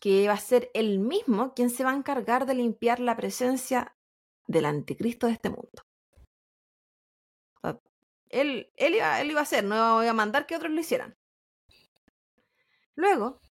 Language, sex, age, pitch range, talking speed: Spanish, female, 30-49, 210-280 Hz, 160 wpm